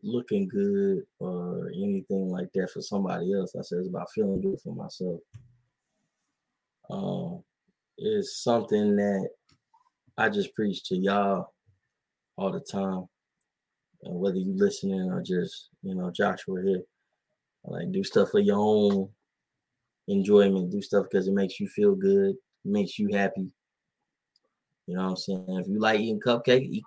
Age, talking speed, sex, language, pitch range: 20-39, 155 wpm, male, English, 100-165 Hz